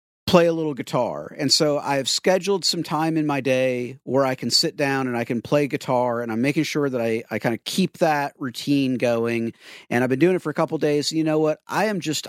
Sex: male